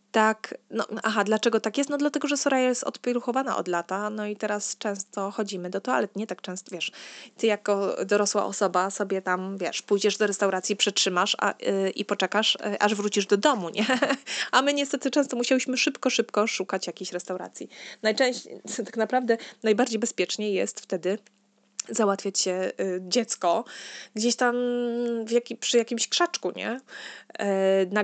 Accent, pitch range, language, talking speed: native, 190-235 Hz, Polish, 165 wpm